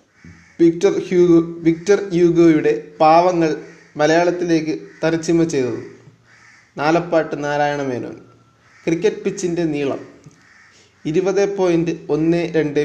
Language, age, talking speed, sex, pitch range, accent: Malayalam, 30-49, 80 wpm, male, 145-170 Hz, native